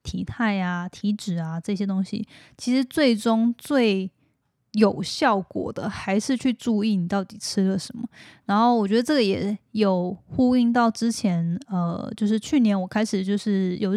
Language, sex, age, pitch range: Chinese, female, 10-29, 195-225 Hz